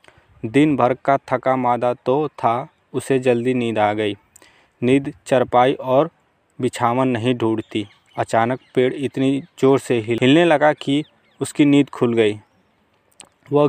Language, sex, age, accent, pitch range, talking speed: Hindi, male, 20-39, native, 115-140 Hz, 140 wpm